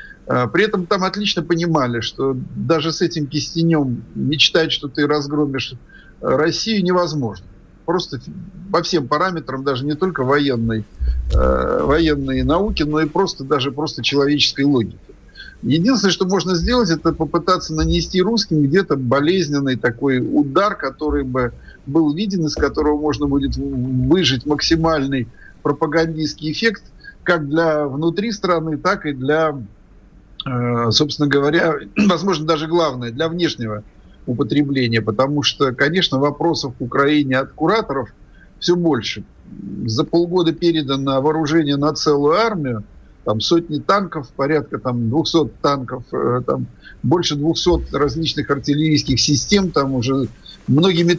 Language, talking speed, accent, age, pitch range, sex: Russian, 125 wpm, native, 50-69, 135-170 Hz, male